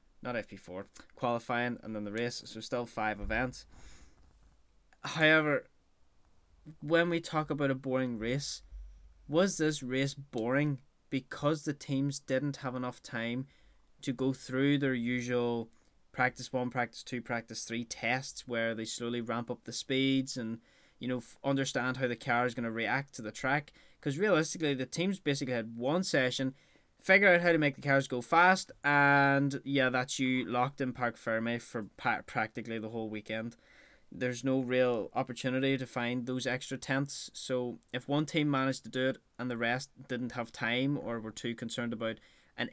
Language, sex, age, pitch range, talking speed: English, male, 10-29, 115-140 Hz, 175 wpm